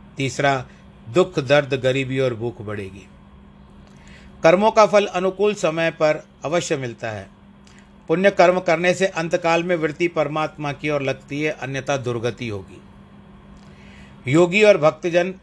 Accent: native